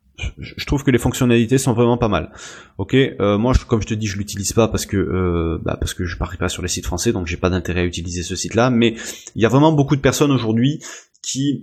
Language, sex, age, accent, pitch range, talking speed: French, male, 20-39, French, 100-120 Hz, 270 wpm